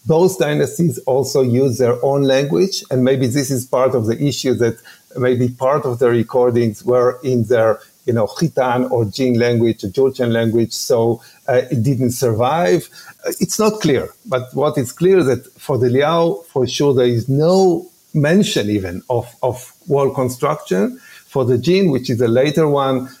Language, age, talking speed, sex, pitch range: English, 50-69, 175 wpm, male, 125-145 Hz